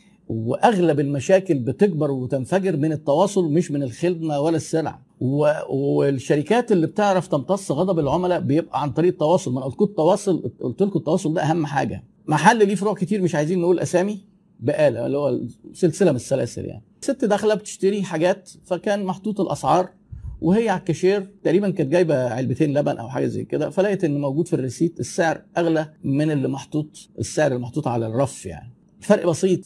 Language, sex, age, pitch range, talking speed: Arabic, male, 50-69, 135-185 Hz, 165 wpm